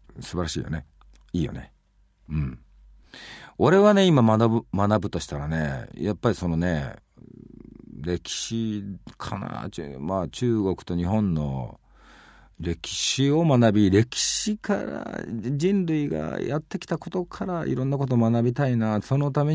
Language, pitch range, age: Japanese, 80-115 Hz, 40-59